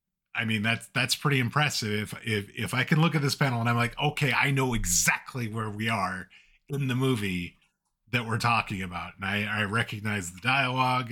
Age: 30-49